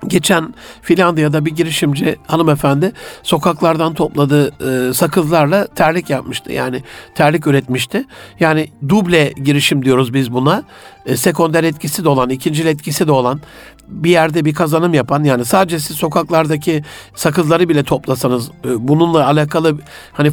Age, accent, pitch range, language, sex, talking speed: 60-79, native, 145-175 Hz, Turkish, male, 130 wpm